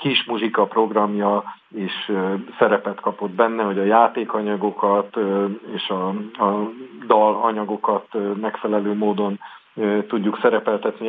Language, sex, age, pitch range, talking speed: Hungarian, male, 50-69, 100-115 Hz, 90 wpm